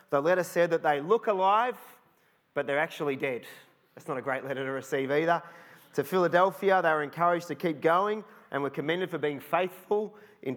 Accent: Australian